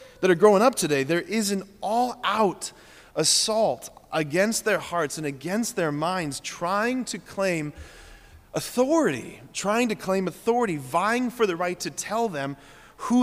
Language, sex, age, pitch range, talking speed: English, male, 30-49, 170-230 Hz, 150 wpm